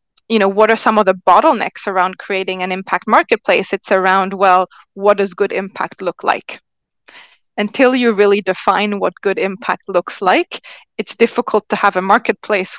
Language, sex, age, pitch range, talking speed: English, female, 20-39, 190-220 Hz, 175 wpm